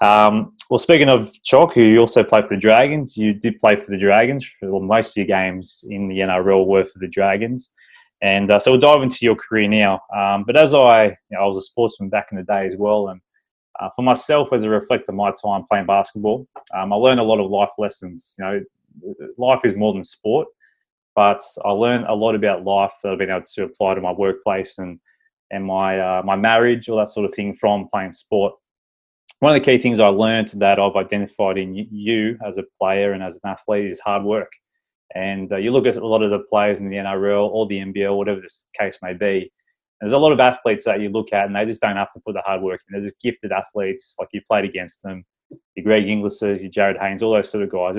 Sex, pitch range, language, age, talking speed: male, 95-115 Hz, English, 20-39, 245 wpm